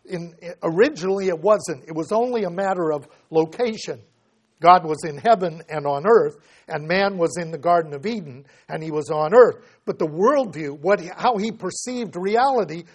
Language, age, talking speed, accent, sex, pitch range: English, 60-79, 185 wpm, American, male, 155-200 Hz